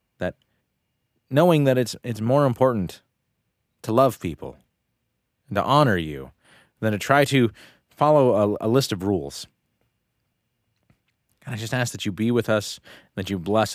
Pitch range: 100-130 Hz